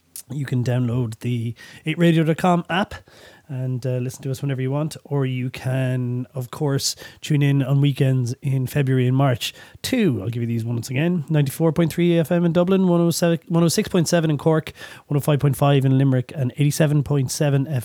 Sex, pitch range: male, 125-145 Hz